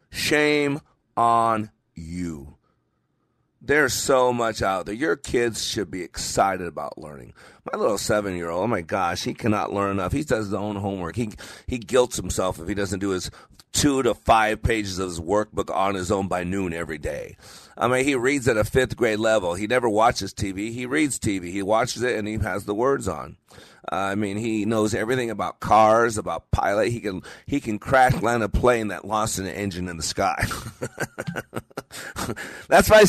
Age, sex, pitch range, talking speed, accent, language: 40-59, male, 100-125 Hz, 190 wpm, American, English